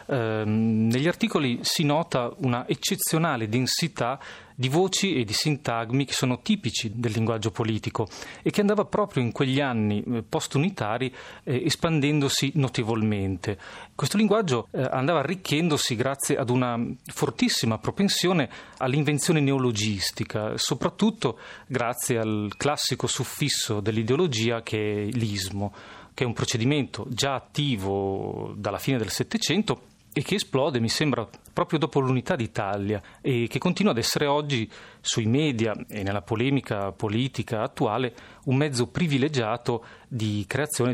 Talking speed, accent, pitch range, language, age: 125 wpm, native, 115-145 Hz, Italian, 30-49